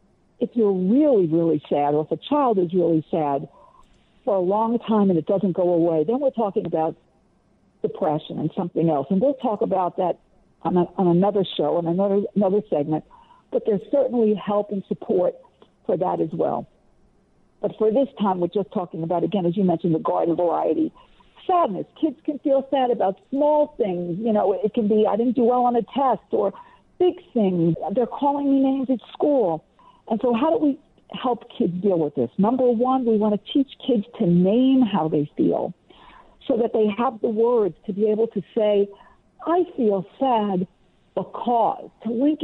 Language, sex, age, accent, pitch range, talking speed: English, female, 60-79, American, 185-250 Hz, 190 wpm